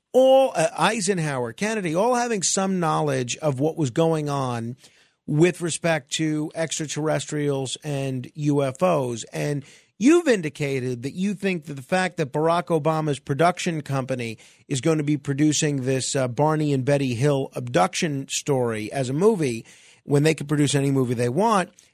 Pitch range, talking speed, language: 145-200 Hz, 155 wpm, English